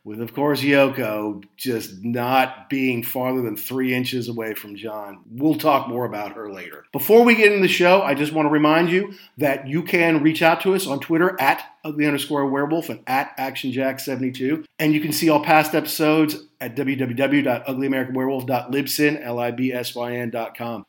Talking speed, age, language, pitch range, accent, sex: 165 wpm, 50-69, English, 135-185 Hz, American, male